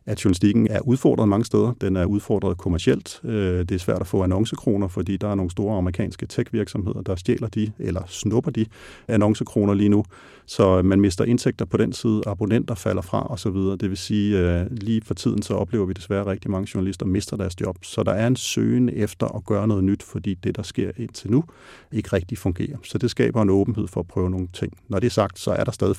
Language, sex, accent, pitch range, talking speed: Danish, male, native, 95-110 Hz, 225 wpm